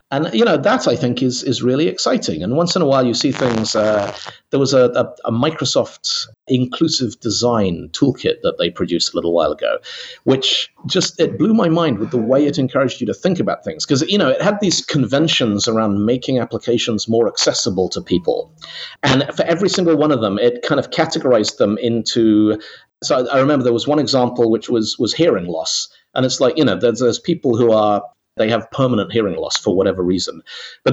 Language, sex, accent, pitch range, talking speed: English, male, British, 120-170 Hz, 215 wpm